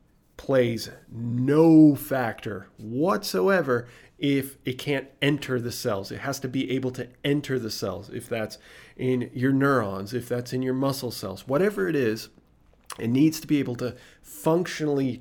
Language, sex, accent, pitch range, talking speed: English, male, American, 115-140 Hz, 160 wpm